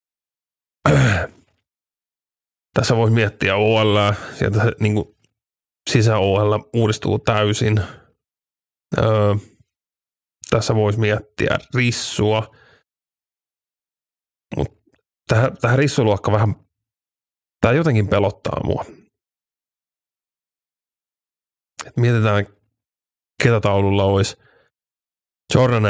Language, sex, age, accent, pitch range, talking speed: Finnish, male, 30-49, native, 100-115 Hz, 65 wpm